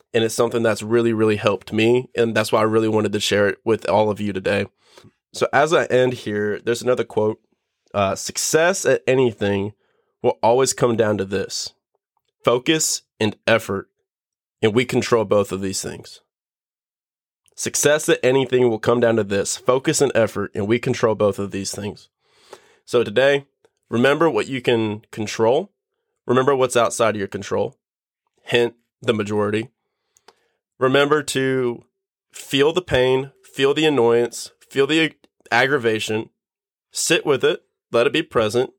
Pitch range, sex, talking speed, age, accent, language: 110-135 Hz, male, 160 wpm, 20-39, American, English